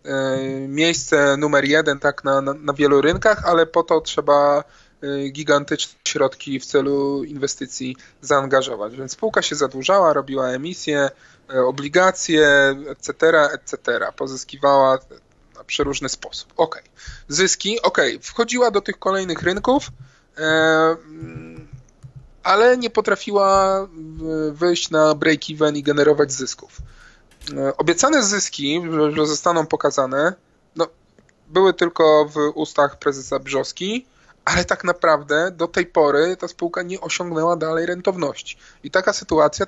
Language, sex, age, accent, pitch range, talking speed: Polish, male, 20-39, native, 140-175 Hz, 115 wpm